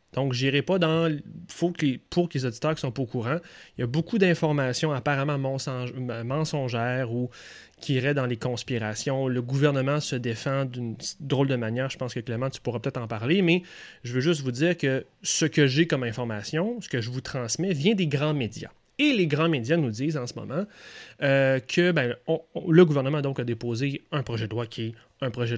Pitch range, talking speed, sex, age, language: 125-160 Hz, 230 wpm, male, 30-49, French